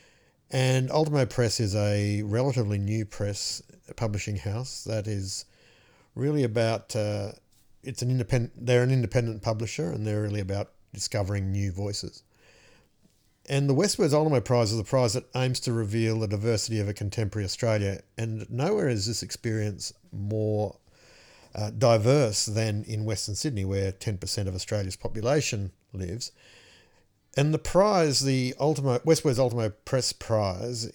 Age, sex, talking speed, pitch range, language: 50-69, male, 145 wpm, 100-125 Hz, English